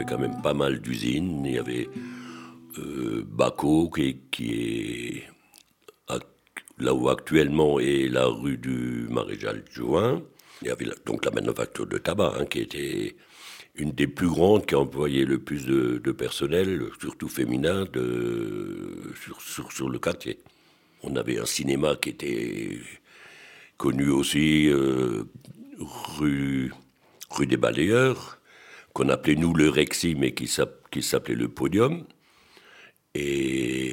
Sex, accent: male, French